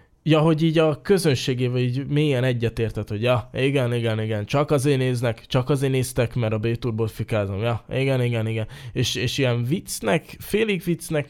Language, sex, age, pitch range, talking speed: Hungarian, male, 20-39, 110-140 Hz, 170 wpm